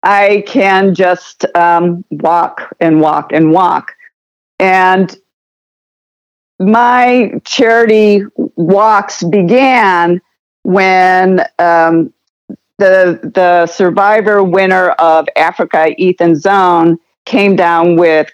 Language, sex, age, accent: English, female, 50-69, American